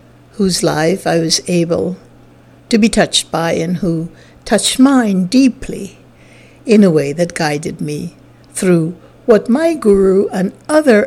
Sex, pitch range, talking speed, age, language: female, 165-245 Hz, 140 wpm, 60-79, English